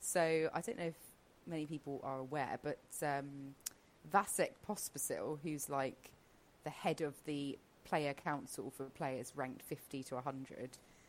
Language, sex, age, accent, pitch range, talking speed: English, female, 20-39, British, 135-160 Hz, 145 wpm